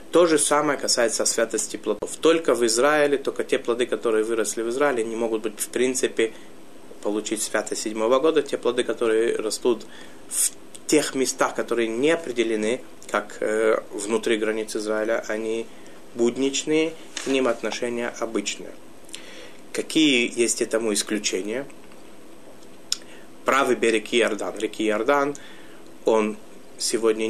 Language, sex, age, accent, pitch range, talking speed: Russian, male, 30-49, native, 105-145 Hz, 125 wpm